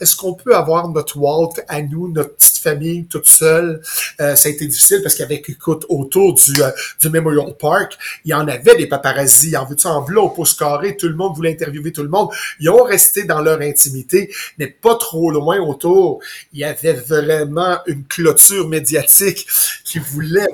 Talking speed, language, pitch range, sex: 200 wpm, French, 150-195 Hz, male